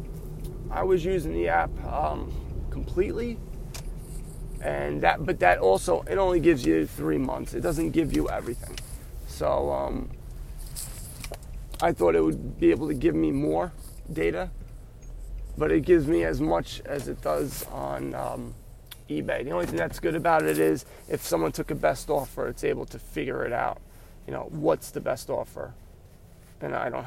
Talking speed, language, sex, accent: 170 wpm, English, male, American